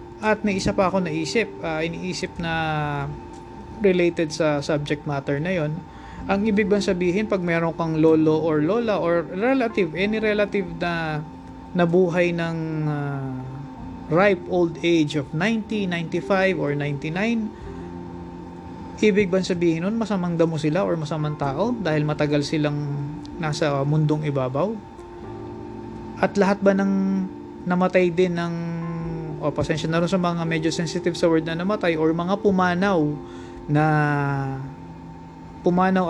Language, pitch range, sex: English, 150-185 Hz, male